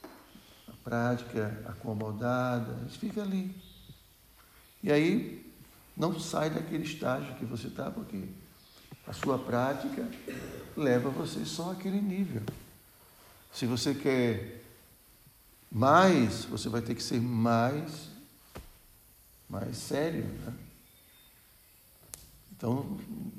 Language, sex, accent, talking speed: Portuguese, male, Brazilian, 90 wpm